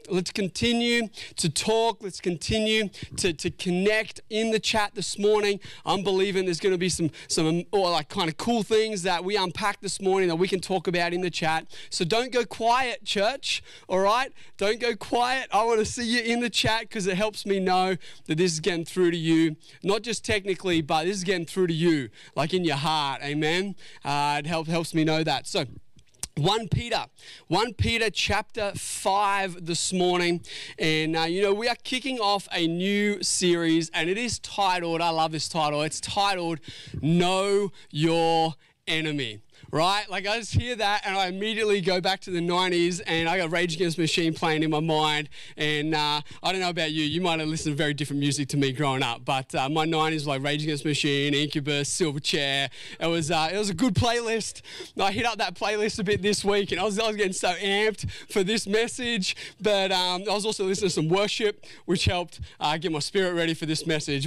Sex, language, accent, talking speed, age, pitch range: male, English, Australian, 215 wpm, 20-39, 155-205 Hz